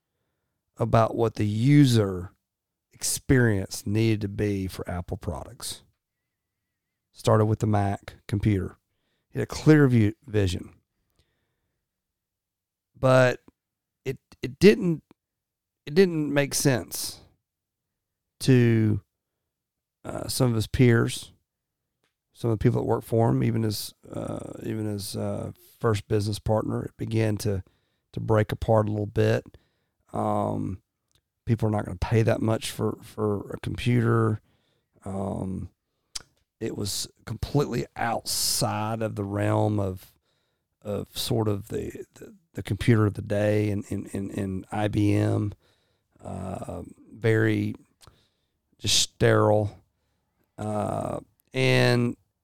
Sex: male